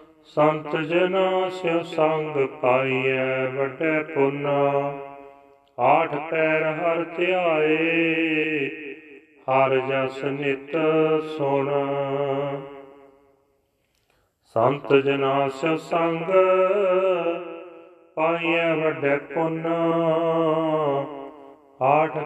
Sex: male